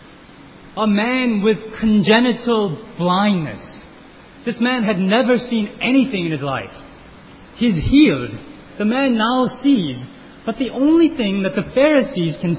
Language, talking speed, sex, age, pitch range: English, 135 wpm, male, 30-49, 155-240 Hz